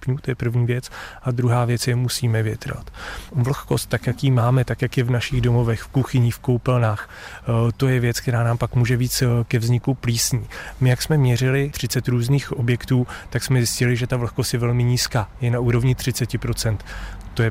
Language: Czech